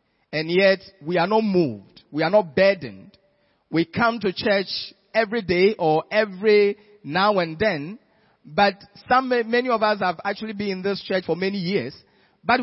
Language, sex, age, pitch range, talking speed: English, male, 40-59, 165-225 Hz, 170 wpm